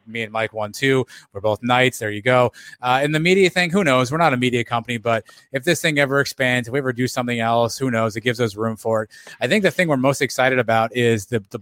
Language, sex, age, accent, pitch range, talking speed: English, male, 20-39, American, 115-135 Hz, 280 wpm